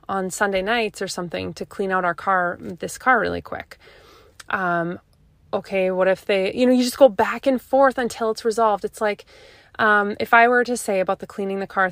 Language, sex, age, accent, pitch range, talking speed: English, female, 20-39, American, 195-250 Hz, 215 wpm